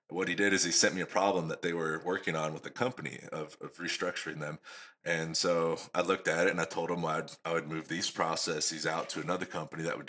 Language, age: English, 30-49